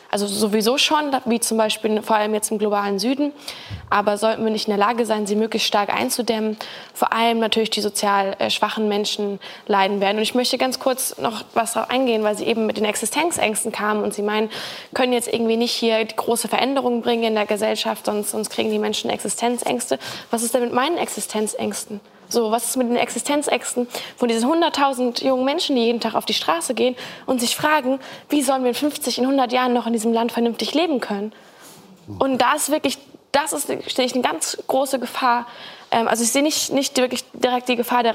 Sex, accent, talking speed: female, German, 210 wpm